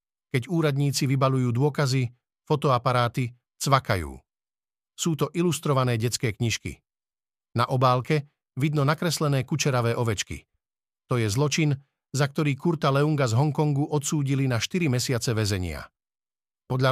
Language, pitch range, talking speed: Slovak, 125-155 Hz, 115 wpm